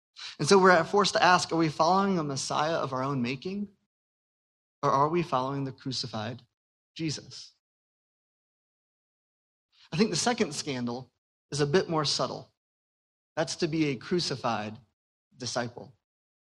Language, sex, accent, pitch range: English, male, American, 120-160 Hz